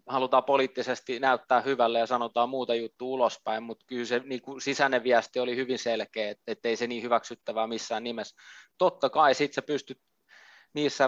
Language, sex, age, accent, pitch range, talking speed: Finnish, male, 20-39, native, 115-130 Hz, 175 wpm